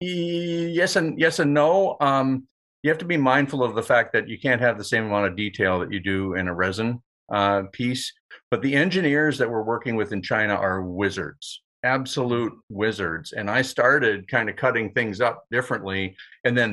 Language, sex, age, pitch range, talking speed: English, male, 50-69, 100-145 Hz, 195 wpm